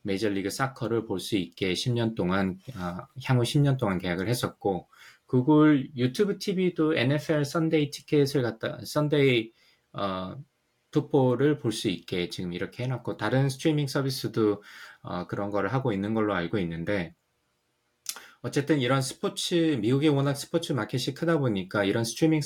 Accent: native